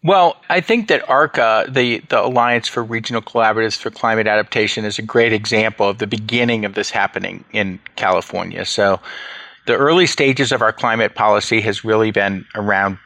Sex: male